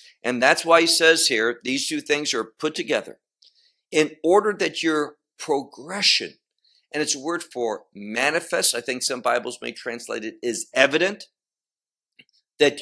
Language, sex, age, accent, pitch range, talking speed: English, male, 50-69, American, 125-190 Hz, 155 wpm